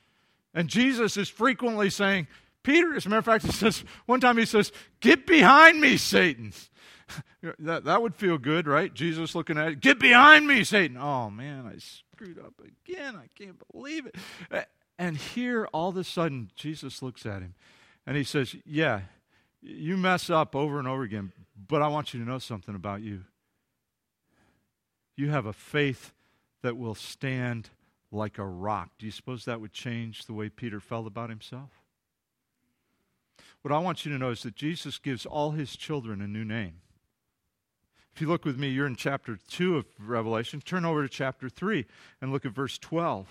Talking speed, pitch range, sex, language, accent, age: 185 wpm, 115-170 Hz, male, English, American, 50-69